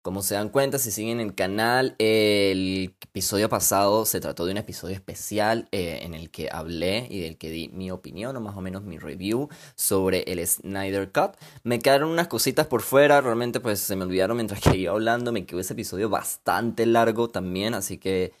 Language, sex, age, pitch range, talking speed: Spanish, male, 20-39, 90-120 Hz, 200 wpm